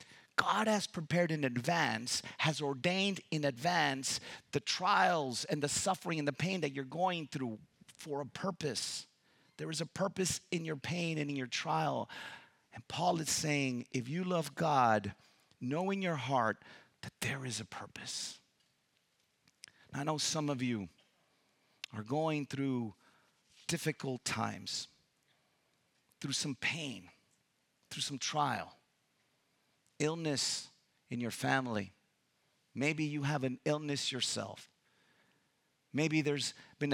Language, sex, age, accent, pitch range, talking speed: English, male, 40-59, American, 125-155 Hz, 130 wpm